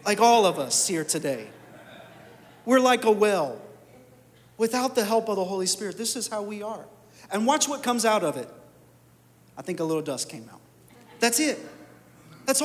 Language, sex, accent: English, male, American